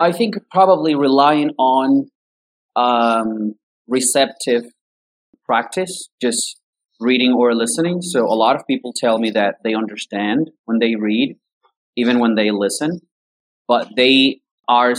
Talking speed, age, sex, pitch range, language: 130 wpm, 30-49, male, 115-145 Hz, English